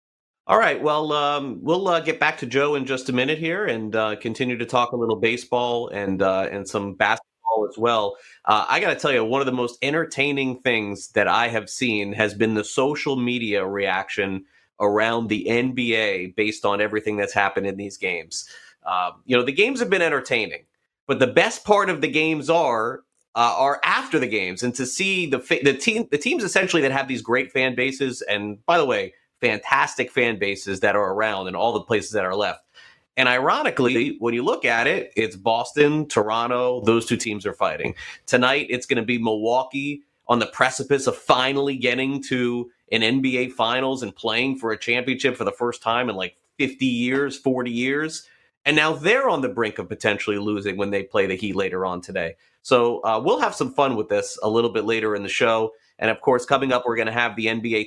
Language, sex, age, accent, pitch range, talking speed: English, male, 30-49, American, 110-135 Hz, 215 wpm